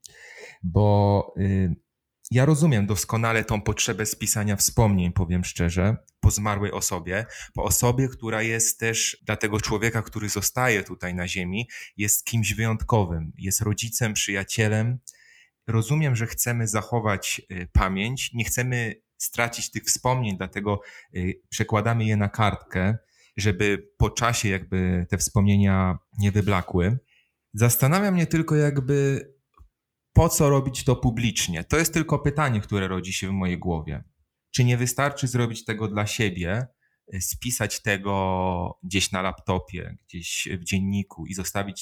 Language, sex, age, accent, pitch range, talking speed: Polish, male, 30-49, native, 95-120 Hz, 135 wpm